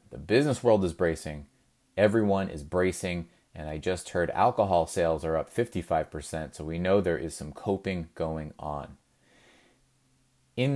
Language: English